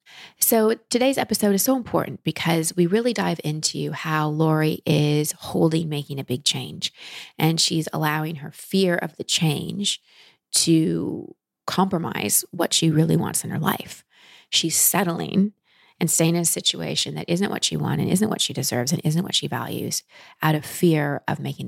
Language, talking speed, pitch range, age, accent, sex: English, 175 wpm, 150-185 Hz, 30-49, American, female